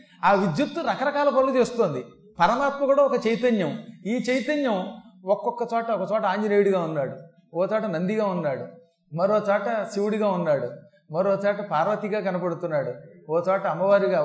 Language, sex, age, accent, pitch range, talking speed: Telugu, male, 30-49, native, 165-215 Hz, 130 wpm